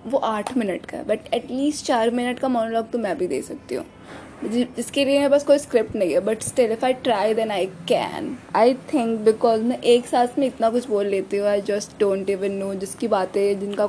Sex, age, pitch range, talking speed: female, 20-39, 210-265 Hz, 220 wpm